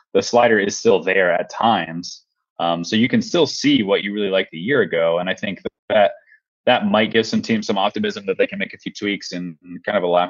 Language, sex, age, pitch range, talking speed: English, male, 20-39, 95-125 Hz, 250 wpm